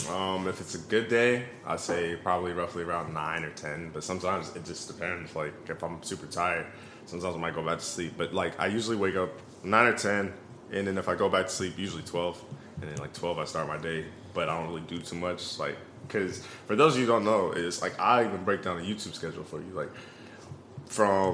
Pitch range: 85-115 Hz